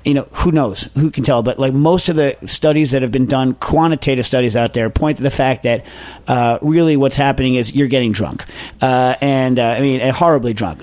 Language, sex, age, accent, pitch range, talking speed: English, male, 40-59, American, 120-145 Hz, 225 wpm